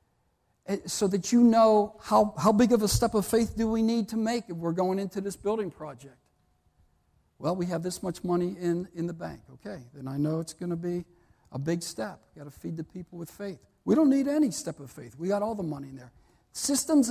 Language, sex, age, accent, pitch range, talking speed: English, male, 60-79, American, 155-220 Hz, 235 wpm